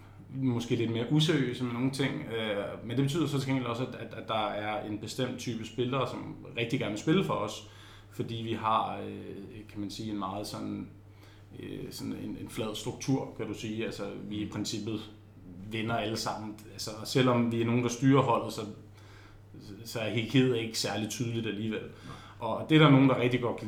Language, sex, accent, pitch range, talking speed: Danish, male, native, 105-125 Hz, 185 wpm